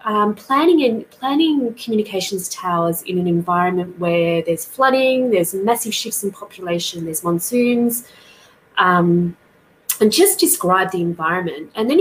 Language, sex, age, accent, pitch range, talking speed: English, female, 20-39, Australian, 175-240 Hz, 135 wpm